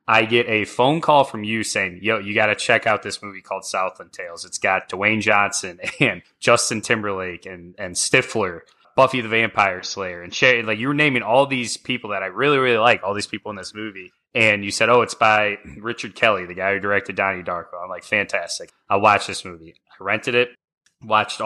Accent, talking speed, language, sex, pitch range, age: American, 220 wpm, English, male, 100-115 Hz, 20-39